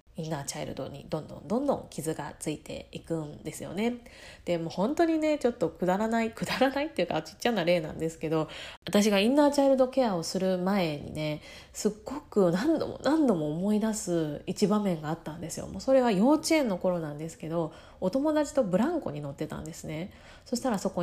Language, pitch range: Japanese, 160-240 Hz